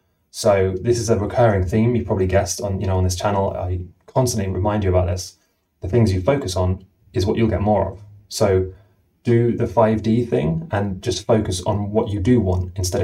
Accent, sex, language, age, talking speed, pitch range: British, male, English, 20-39, 210 wpm, 95-115 Hz